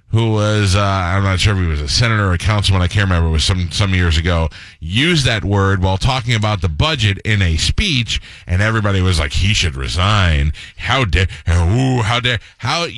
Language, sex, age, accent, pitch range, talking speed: English, male, 30-49, American, 95-130 Hz, 215 wpm